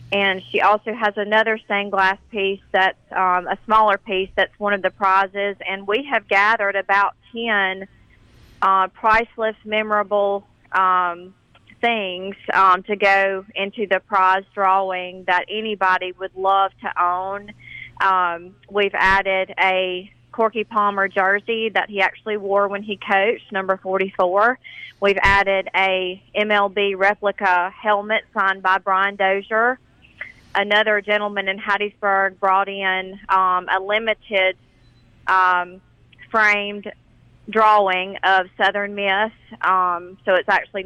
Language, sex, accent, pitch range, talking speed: English, female, American, 190-205 Hz, 125 wpm